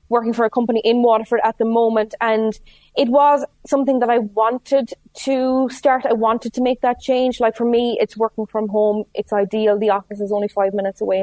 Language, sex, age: English, female, 20-39